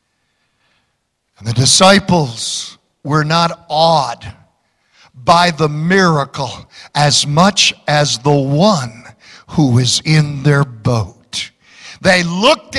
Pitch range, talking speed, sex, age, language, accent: 165-255 Hz, 95 wpm, male, 60-79, English, American